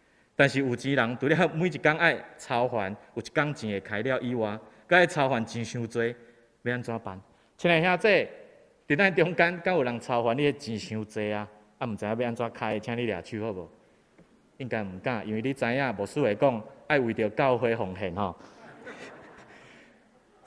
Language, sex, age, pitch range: Chinese, male, 30-49, 115-170 Hz